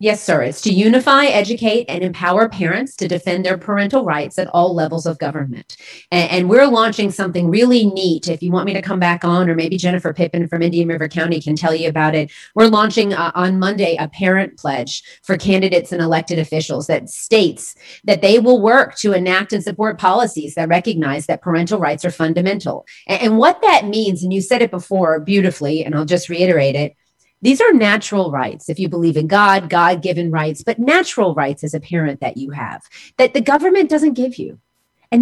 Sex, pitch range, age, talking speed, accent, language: female, 165-225 Hz, 30-49, 205 wpm, American, English